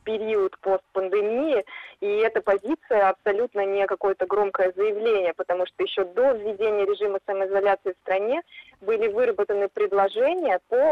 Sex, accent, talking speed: female, native, 125 wpm